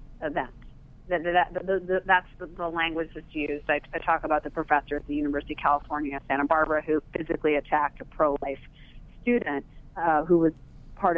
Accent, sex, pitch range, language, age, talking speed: American, female, 145-175 Hz, English, 40-59, 160 wpm